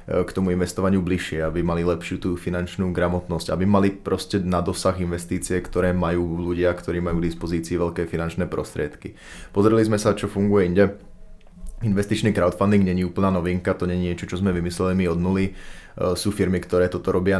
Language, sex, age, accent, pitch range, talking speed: Czech, male, 20-39, native, 90-95 Hz, 170 wpm